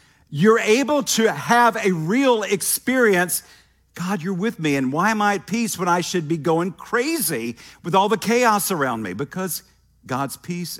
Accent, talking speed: American, 180 wpm